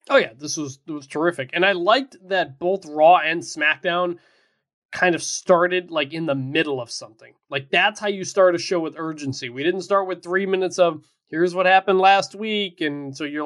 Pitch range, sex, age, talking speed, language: 145-185 Hz, male, 20-39, 215 wpm, English